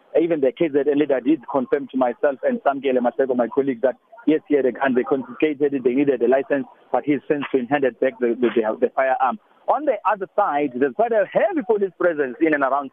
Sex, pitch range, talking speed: male, 130-165 Hz, 225 wpm